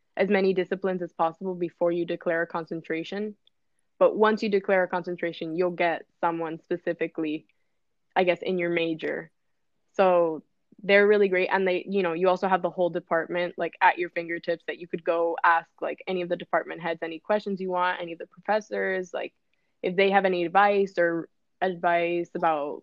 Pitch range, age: 170-195 Hz, 10-29